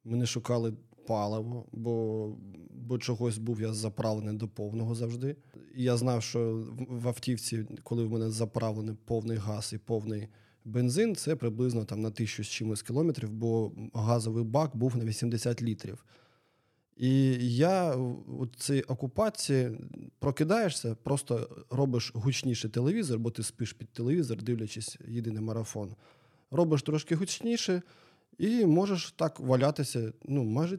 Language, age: Ukrainian, 20-39